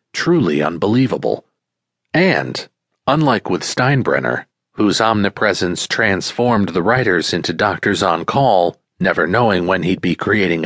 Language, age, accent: English, 40-59, American